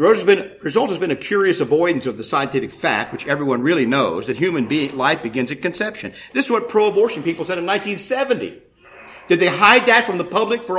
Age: 50-69